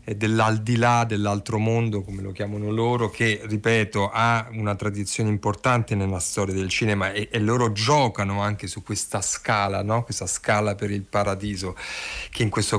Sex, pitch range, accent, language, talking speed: male, 105-125 Hz, native, Italian, 160 wpm